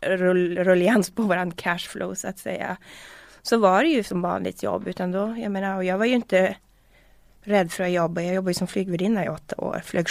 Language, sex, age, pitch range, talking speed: Swedish, female, 20-39, 185-230 Hz, 210 wpm